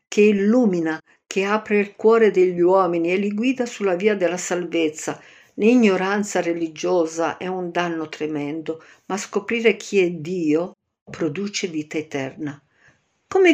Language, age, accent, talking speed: Italian, 50-69, native, 135 wpm